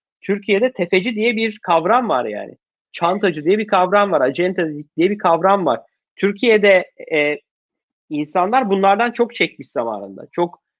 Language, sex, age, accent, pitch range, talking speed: Turkish, male, 30-49, native, 165-215 Hz, 140 wpm